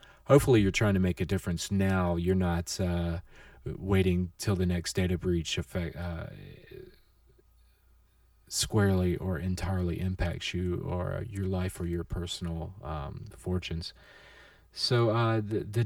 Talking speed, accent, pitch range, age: 140 wpm, American, 90-110 Hz, 40-59